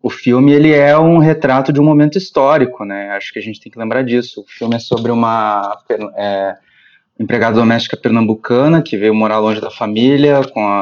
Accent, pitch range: Brazilian, 115-145 Hz